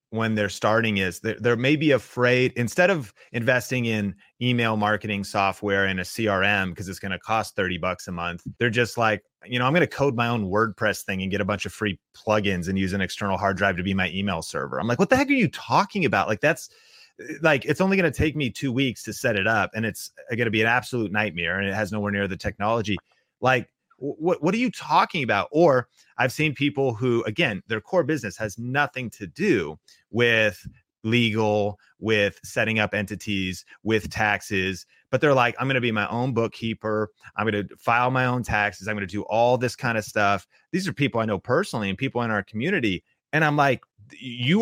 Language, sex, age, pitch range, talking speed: English, male, 30-49, 105-140 Hz, 220 wpm